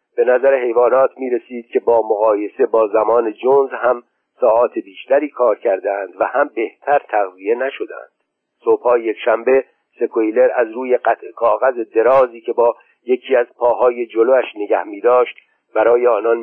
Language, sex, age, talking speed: Persian, male, 50-69, 145 wpm